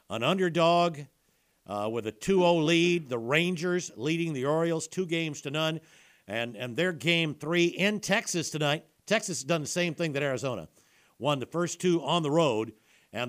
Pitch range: 135-170 Hz